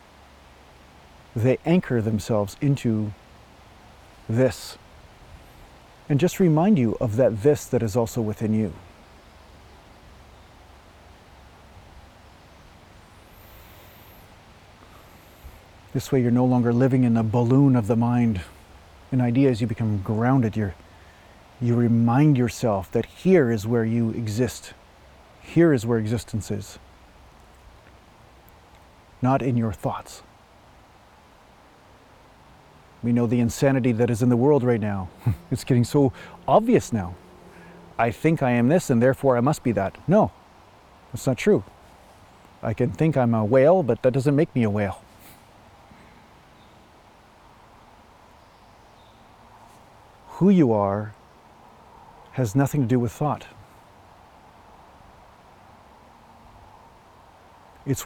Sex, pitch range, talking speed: male, 90-125 Hz, 110 wpm